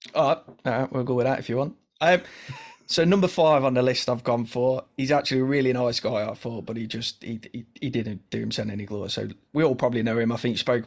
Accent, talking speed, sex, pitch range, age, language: British, 270 wpm, male, 115-130 Hz, 20-39, English